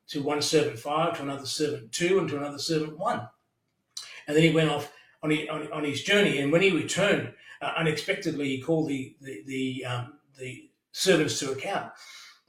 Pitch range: 145-175 Hz